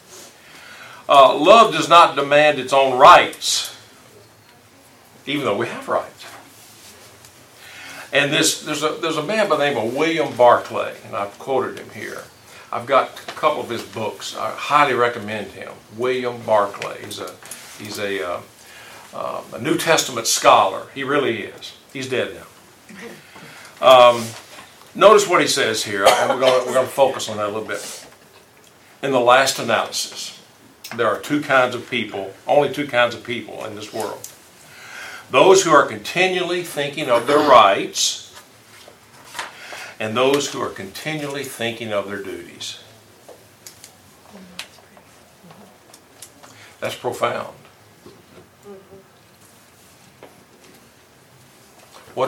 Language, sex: English, male